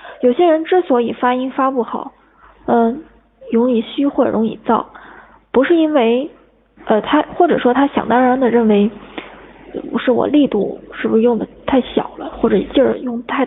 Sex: female